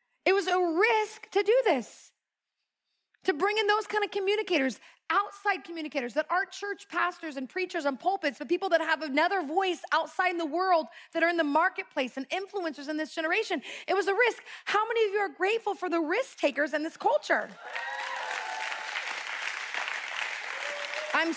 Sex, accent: female, American